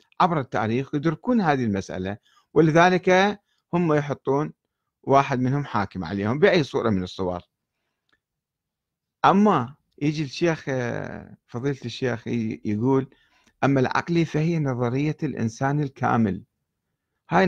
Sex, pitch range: male, 115-155 Hz